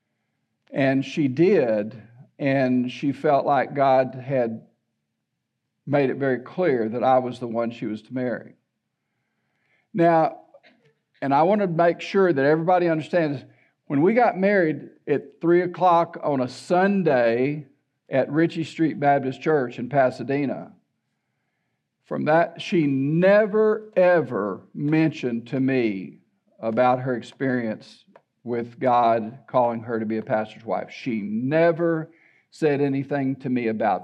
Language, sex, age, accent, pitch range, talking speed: English, male, 50-69, American, 130-175 Hz, 135 wpm